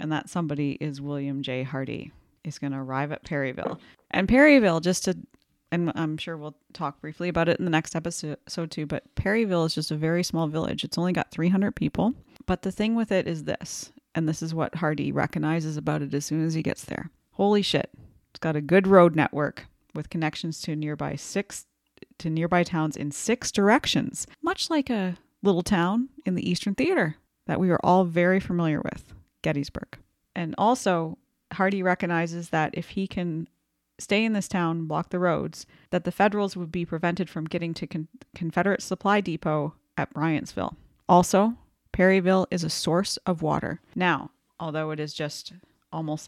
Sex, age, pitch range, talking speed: female, 30-49, 155-190 Hz, 185 wpm